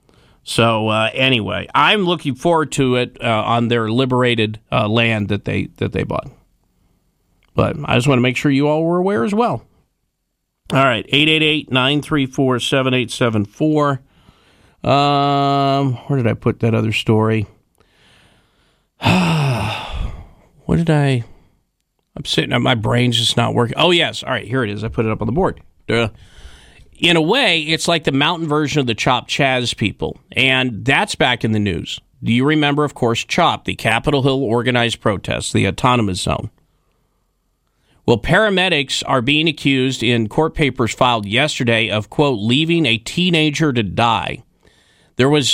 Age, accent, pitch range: 40-59, American, 115-145 Hz